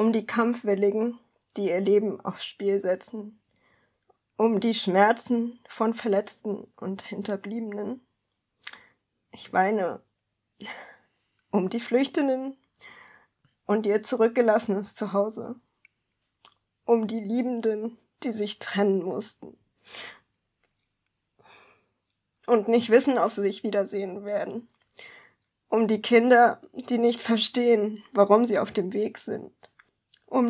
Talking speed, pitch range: 105 wpm, 205-240 Hz